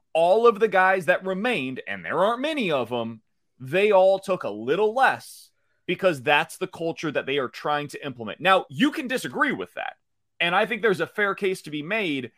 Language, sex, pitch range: English, male, 155-220 Hz